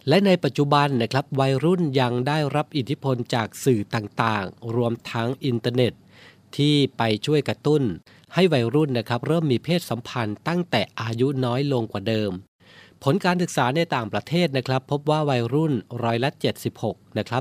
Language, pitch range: Thai, 110-140 Hz